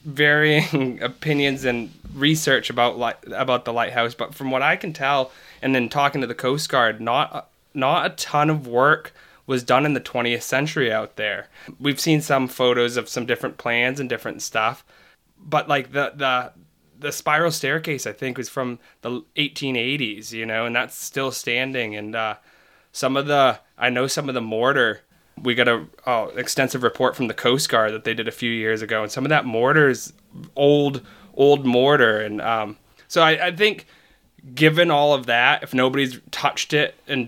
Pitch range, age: 120-145 Hz, 20-39